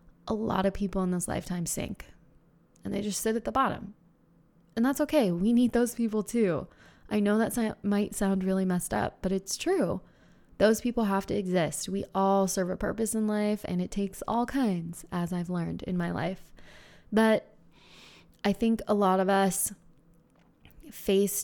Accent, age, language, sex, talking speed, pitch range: American, 20-39, English, female, 180 wpm, 180-210 Hz